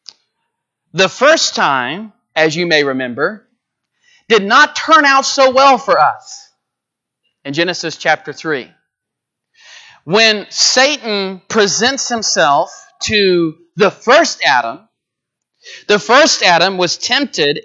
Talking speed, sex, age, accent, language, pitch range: 110 wpm, male, 40-59, American, English, 195-250 Hz